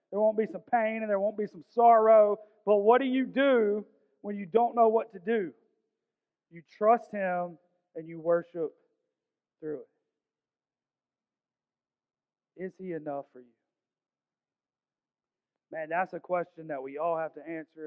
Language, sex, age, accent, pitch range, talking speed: English, male, 40-59, American, 155-205 Hz, 155 wpm